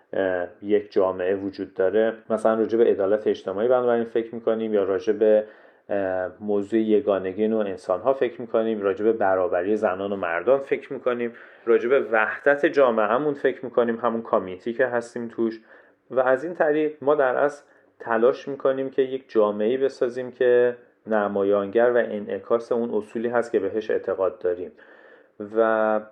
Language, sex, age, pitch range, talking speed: Persian, male, 30-49, 100-125 Hz, 150 wpm